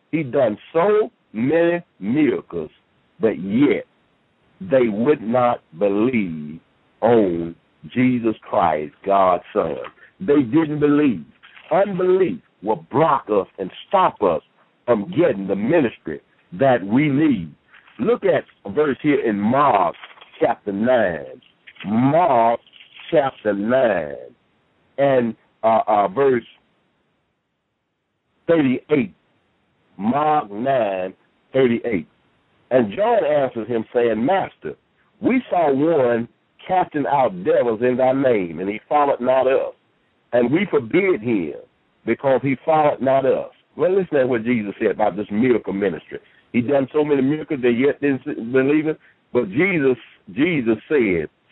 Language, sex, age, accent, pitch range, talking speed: English, male, 60-79, American, 115-165 Hz, 125 wpm